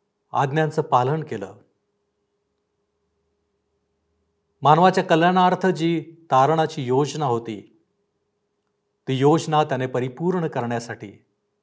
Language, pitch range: Marathi, 120-155 Hz